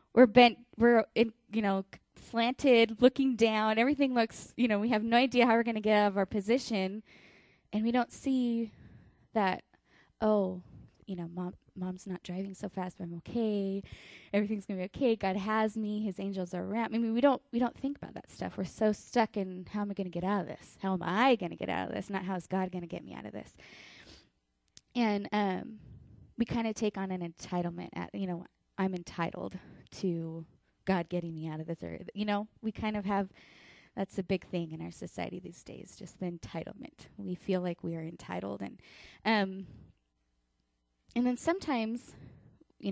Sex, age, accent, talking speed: female, 10-29, American, 210 wpm